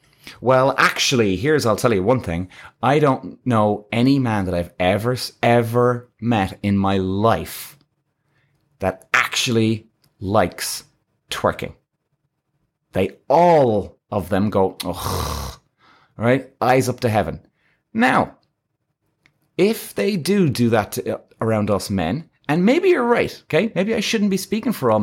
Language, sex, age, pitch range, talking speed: English, male, 30-49, 110-155 Hz, 140 wpm